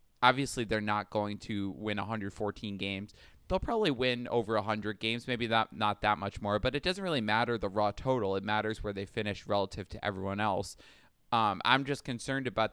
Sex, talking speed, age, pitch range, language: male, 200 wpm, 20-39, 105-120 Hz, English